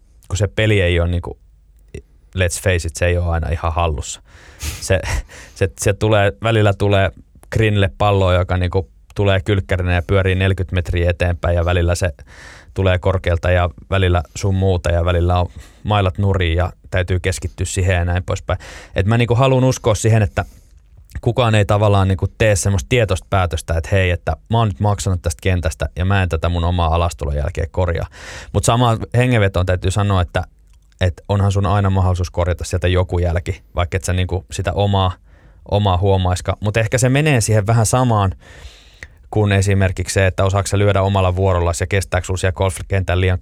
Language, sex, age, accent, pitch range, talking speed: Finnish, male, 20-39, native, 85-100 Hz, 180 wpm